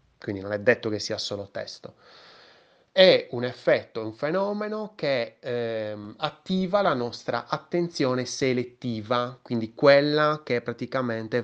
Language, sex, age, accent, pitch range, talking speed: Italian, male, 20-39, native, 110-140 Hz, 125 wpm